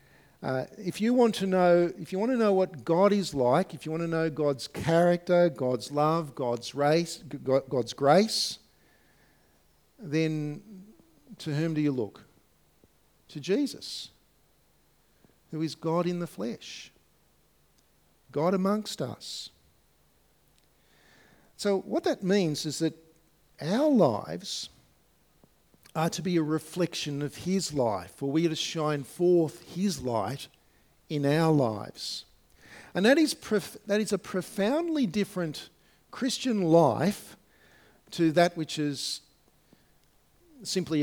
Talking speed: 125 wpm